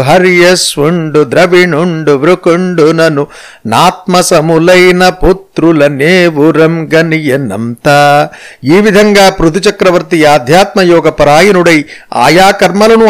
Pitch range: 155-185 Hz